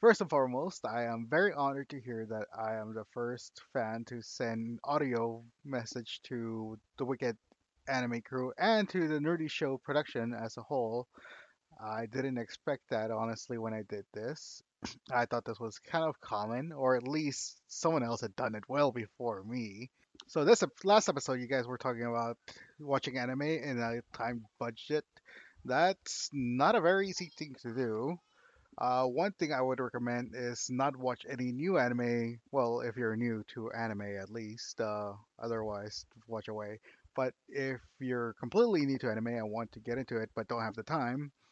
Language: English